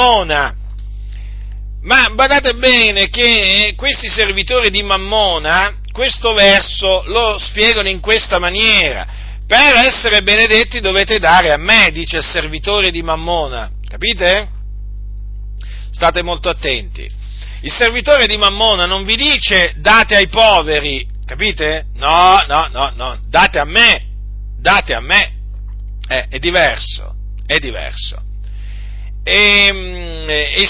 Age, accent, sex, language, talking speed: 50-69, native, male, Italian, 115 wpm